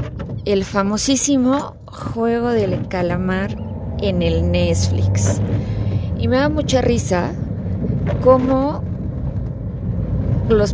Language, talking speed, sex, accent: Spanish, 85 wpm, female, Mexican